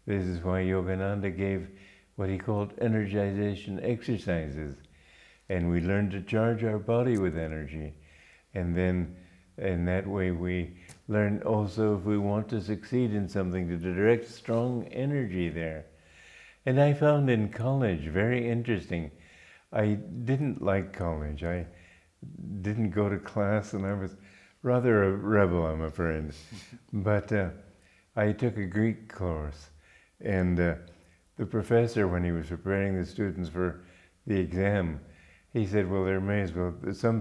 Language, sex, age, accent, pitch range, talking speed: English, male, 50-69, American, 90-115 Hz, 145 wpm